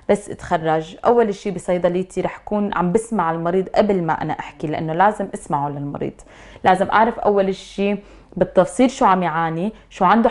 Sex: female